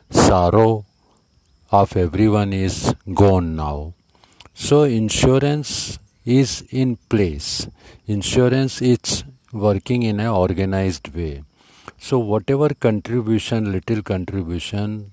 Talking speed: 90 wpm